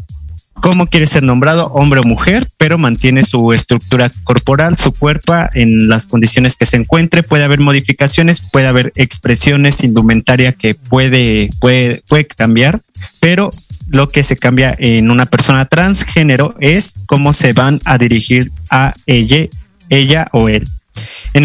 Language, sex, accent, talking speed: Spanish, male, Mexican, 150 wpm